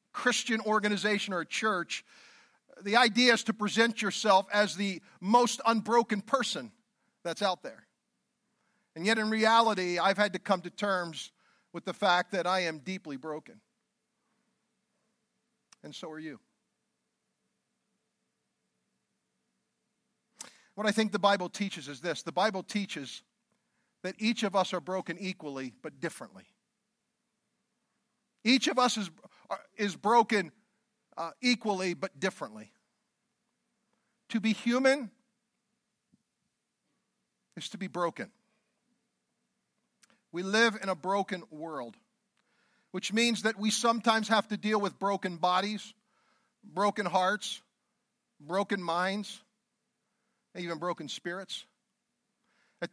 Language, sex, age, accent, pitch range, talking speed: English, male, 50-69, American, 190-230 Hz, 120 wpm